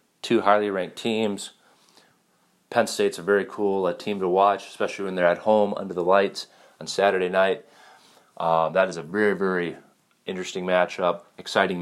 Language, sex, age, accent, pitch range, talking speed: English, male, 30-49, American, 85-100 Hz, 160 wpm